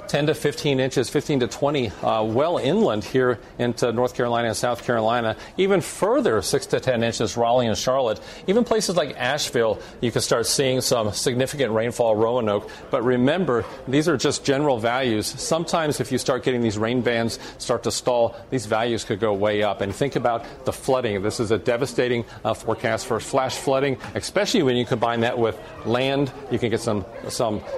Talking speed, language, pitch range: 190 wpm, English, 115-130 Hz